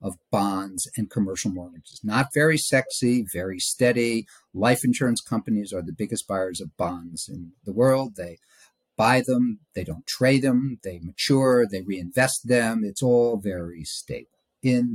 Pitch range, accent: 100-130 Hz, American